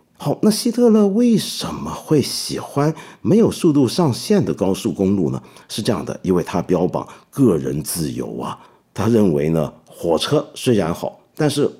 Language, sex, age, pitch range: Chinese, male, 50-69, 100-170 Hz